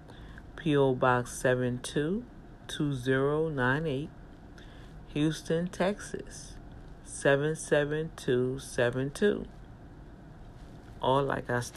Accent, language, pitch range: American, English, 130-170 Hz